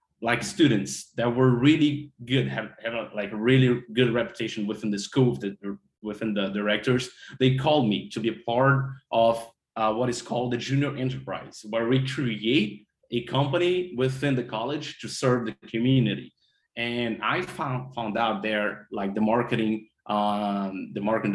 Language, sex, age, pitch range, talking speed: English, male, 30-49, 110-130 Hz, 165 wpm